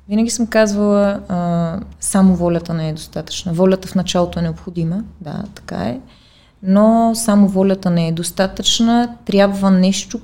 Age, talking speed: 20-39, 145 wpm